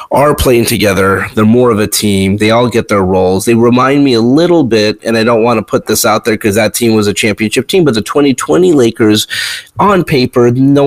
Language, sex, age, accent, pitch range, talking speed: English, male, 30-49, American, 100-130 Hz, 230 wpm